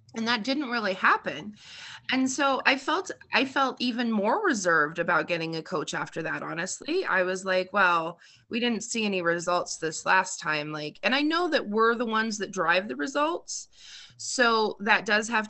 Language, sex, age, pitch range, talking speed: English, female, 20-39, 175-240 Hz, 190 wpm